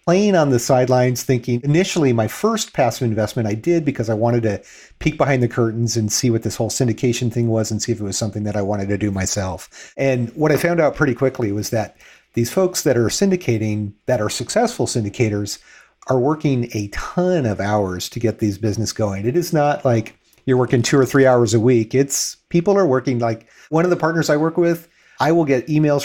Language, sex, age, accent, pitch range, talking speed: English, male, 40-59, American, 110-140 Hz, 225 wpm